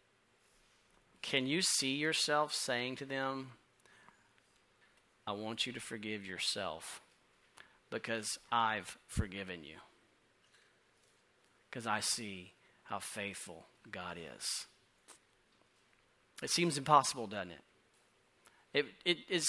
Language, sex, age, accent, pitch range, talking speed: English, male, 40-59, American, 115-145 Hz, 100 wpm